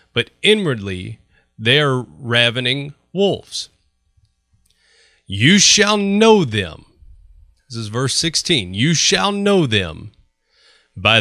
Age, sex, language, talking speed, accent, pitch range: 30-49, male, English, 100 wpm, American, 110-150 Hz